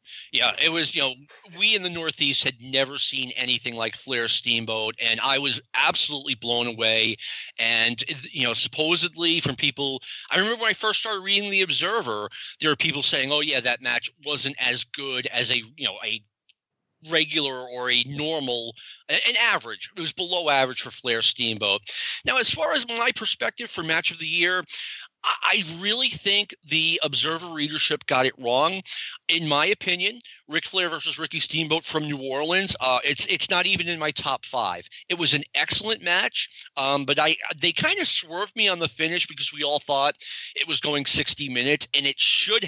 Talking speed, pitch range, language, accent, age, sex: 190 wpm, 130-175 Hz, English, American, 40-59, male